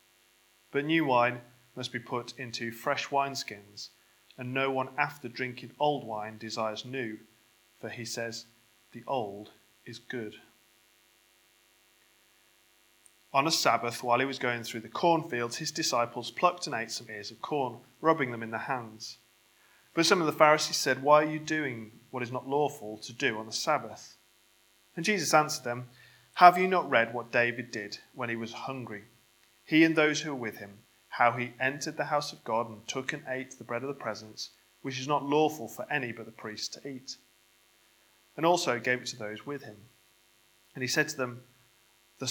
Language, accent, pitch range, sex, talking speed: English, British, 115-140 Hz, male, 185 wpm